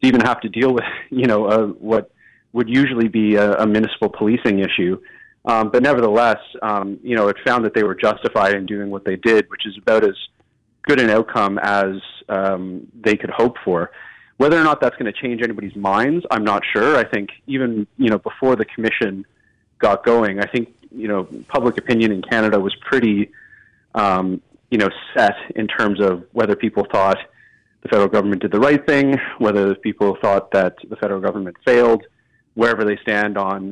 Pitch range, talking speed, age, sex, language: 100-120 Hz, 190 wpm, 30-49, male, English